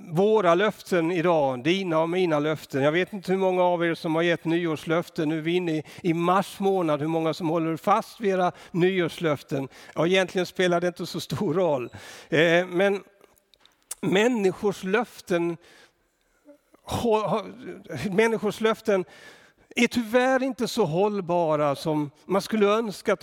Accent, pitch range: native, 165-205 Hz